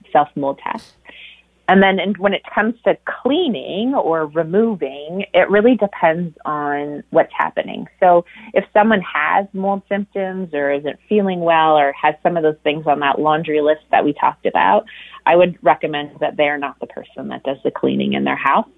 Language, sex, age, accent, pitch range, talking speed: English, female, 30-49, American, 150-185 Hz, 180 wpm